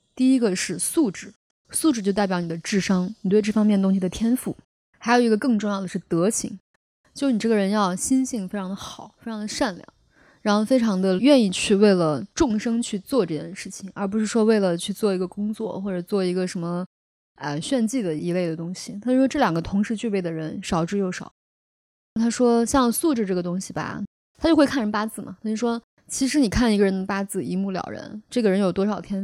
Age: 20-39